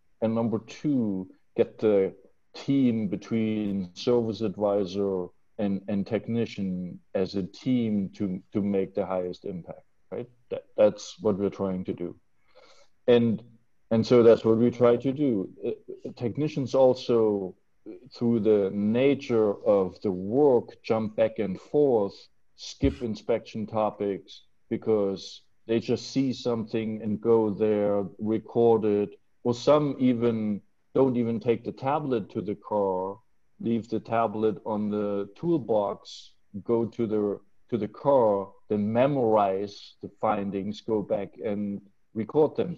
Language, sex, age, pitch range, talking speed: English, male, 50-69, 100-120 Hz, 135 wpm